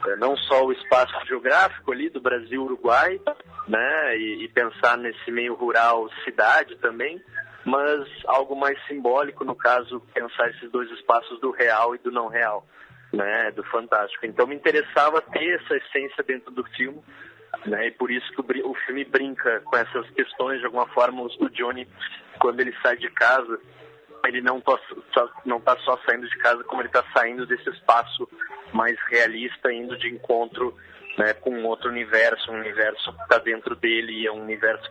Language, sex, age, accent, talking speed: Portuguese, male, 20-39, Brazilian, 165 wpm